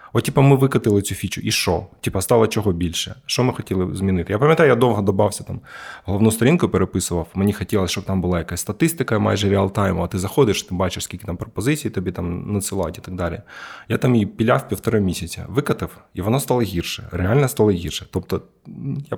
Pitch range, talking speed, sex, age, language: 90-115 Hz, 200 wpm, male, 20-39, Ukrainian